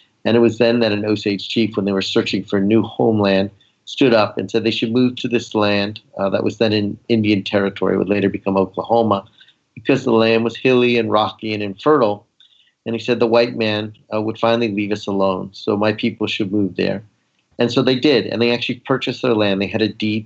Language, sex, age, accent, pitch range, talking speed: English, male, 50-69, American, 100-115 Hz, 230 wpm